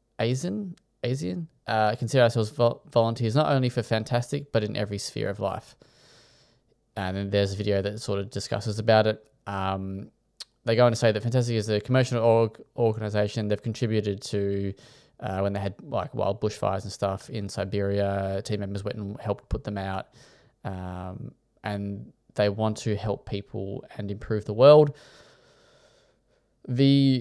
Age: 20-39